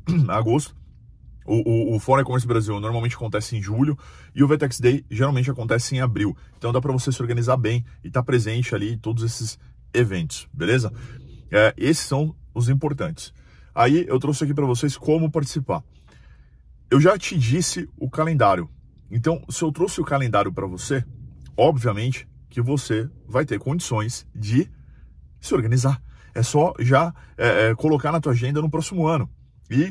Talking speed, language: 170 wpm, Portuguese